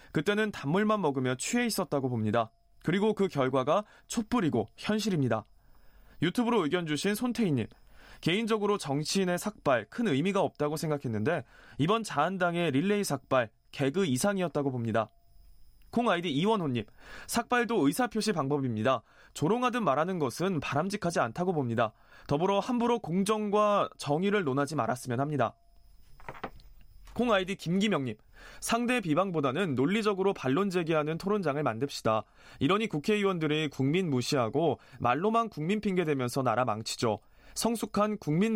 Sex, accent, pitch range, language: male, native, 130-210 Hz, Korean